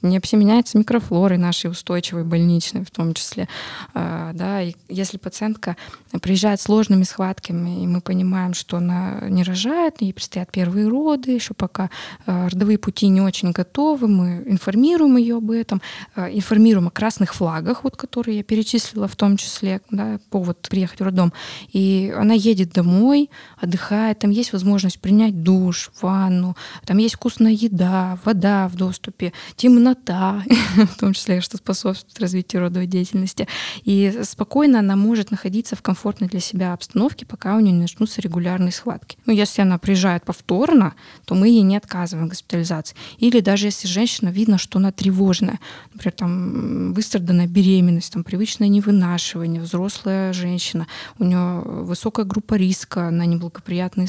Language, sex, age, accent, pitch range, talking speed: Russian, female, 20-39, native, 180-215 Hz, 155 wpm